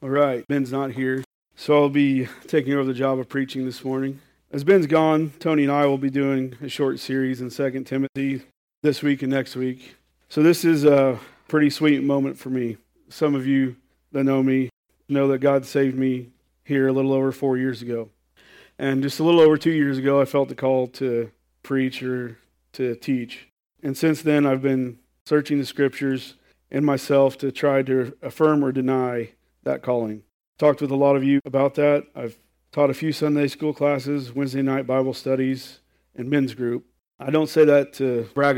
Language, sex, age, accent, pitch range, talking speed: English, male, 40-59, American, 130-145 Hz, 195 wpm